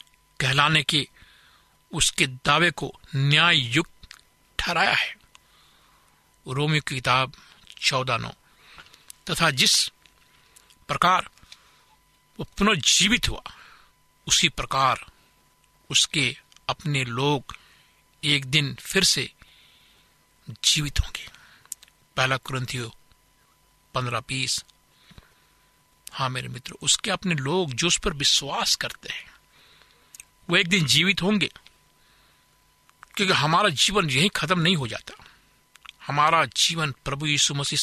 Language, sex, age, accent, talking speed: Hindi, male, 60-79, native, 105 wpm